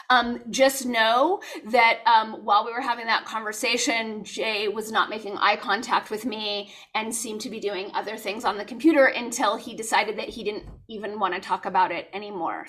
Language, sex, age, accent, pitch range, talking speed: English, female, 30-49, American, 220-270 Hz, 200 wpm